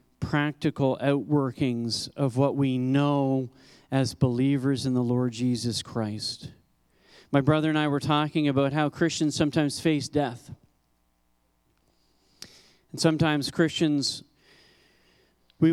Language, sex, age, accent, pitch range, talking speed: English, male, 40-59, American, 125-170 Hz, 110 wpm